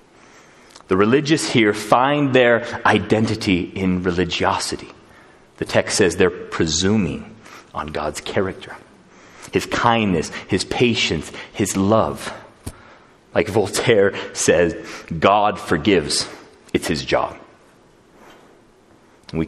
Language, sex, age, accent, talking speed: English, male, 30-49, American, 95 wpm